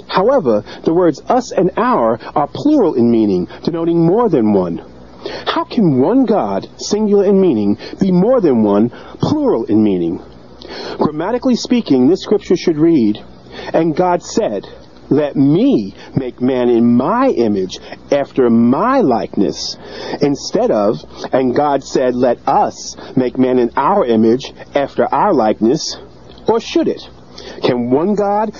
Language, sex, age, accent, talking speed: English, male, 40-59, American, 145 wpm